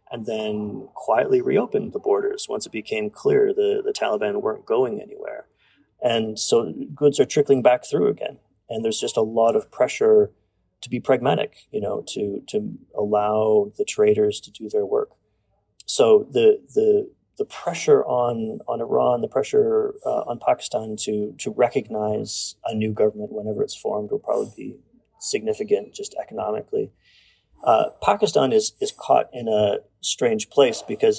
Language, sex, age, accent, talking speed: English, male, 30-49, American, 160 wpm